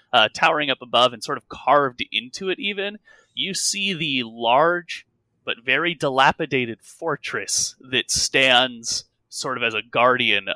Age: 20-39